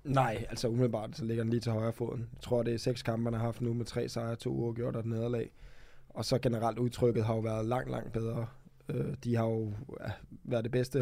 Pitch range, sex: 115-130 Hz, male